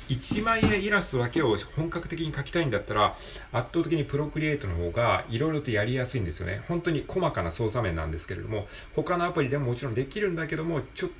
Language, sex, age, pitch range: Japanese, male, 40-59, 95-135 Hz